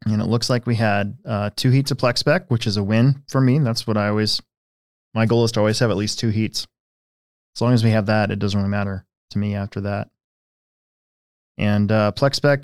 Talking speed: 230 wpm